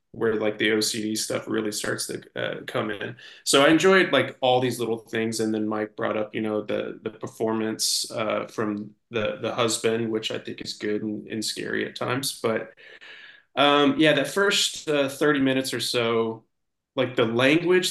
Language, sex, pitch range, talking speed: English, male, 115-145 Hz, 190 wpm